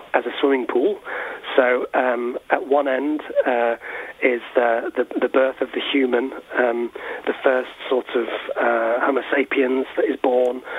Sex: male